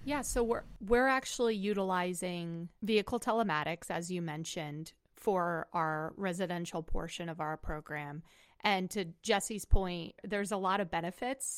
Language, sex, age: English, female, 30-49